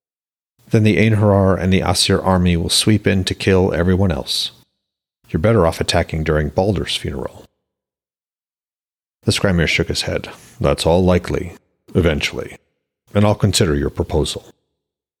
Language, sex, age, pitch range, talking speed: English, male, 40-59, 80-110 Hz, 140 wpm